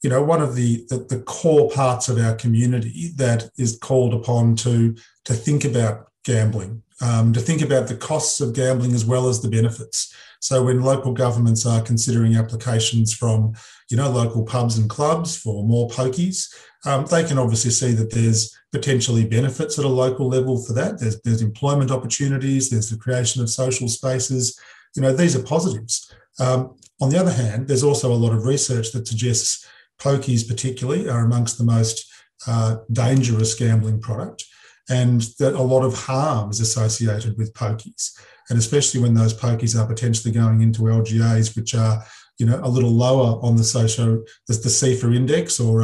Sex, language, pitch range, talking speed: male, English, 115-130 Hz, 180 wpm